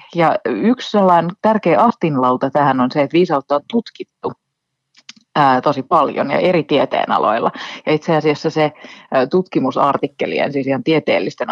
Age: 30-49